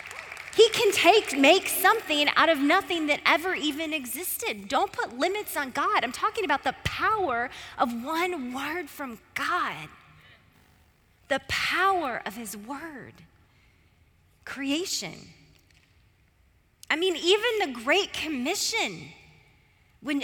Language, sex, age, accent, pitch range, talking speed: English, female, 20-39, American, 240-345 Hz, 120 wpm